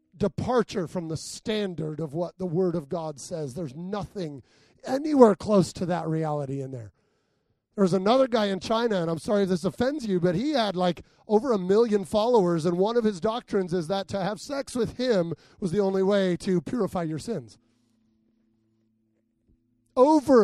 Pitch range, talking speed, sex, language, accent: 175-230 Hz, 180 wpm, male, English, American